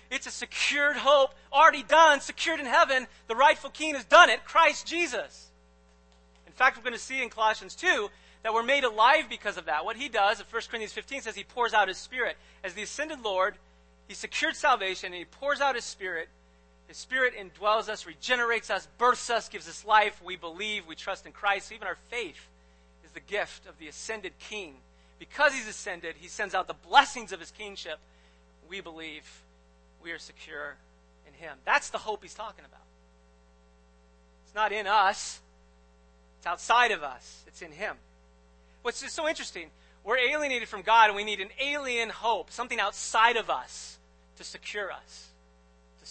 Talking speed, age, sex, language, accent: 185 wpm, 40-59, male, English, American